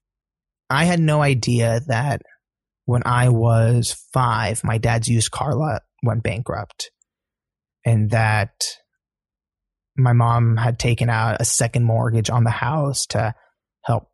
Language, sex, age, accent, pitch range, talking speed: English, male, 20-39, American, 115-145 Hz, 130 wpm